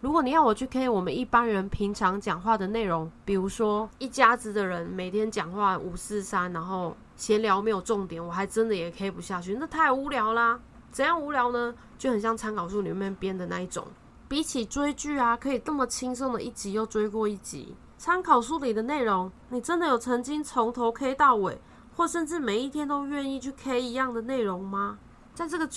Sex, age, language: female, 20-39, English